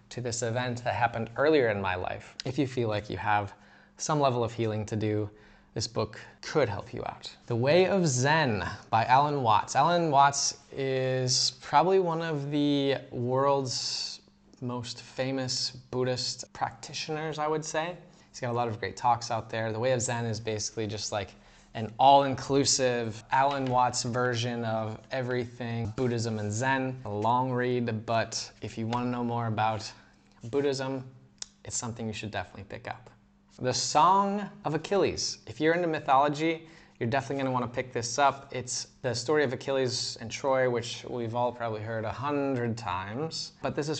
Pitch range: 115-140 Hz